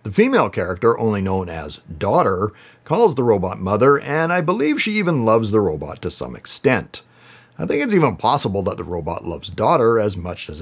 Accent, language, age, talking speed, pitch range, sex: American, English, 40-59, 200 wpm, 100-140 Hz, male